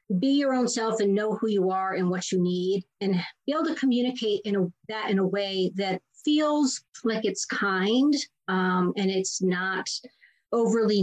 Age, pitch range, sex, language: 40-59, 190-230 Hz, female, English